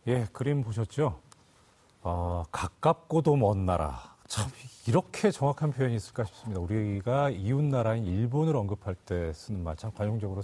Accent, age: native, 40-59